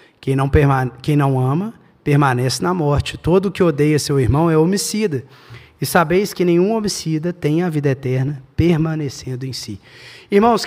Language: Portuguese